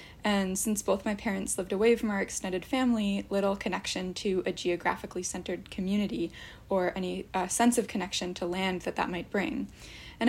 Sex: female